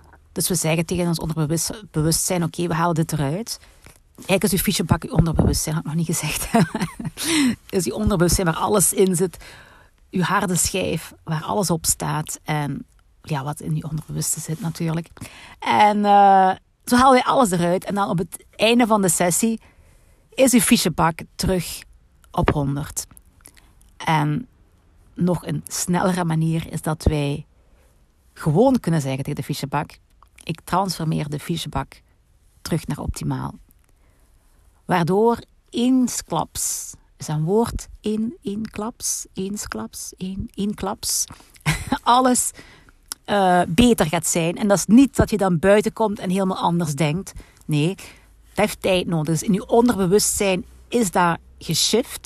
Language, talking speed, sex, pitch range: Dutch, 155 wpm, female, 155-205 Hz